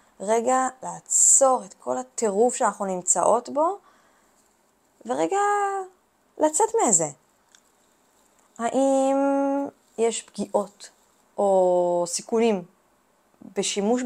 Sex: female